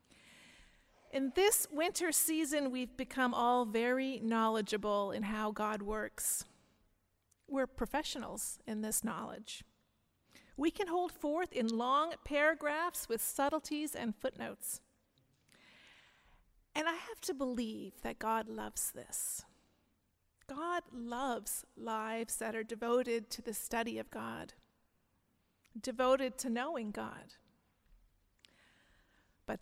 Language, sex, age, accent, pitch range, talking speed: English, female, 40-59, American, 220-300 Hz, 110 wpm